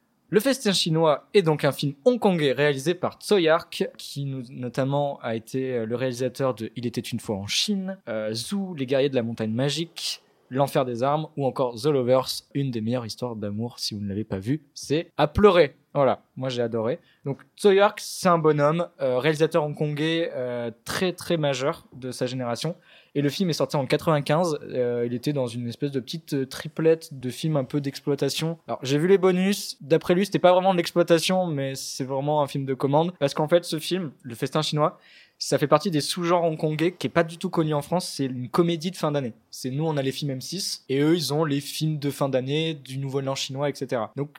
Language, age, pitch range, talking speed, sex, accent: French, 20-39, 130-170 Hz, 220 wpm, male, French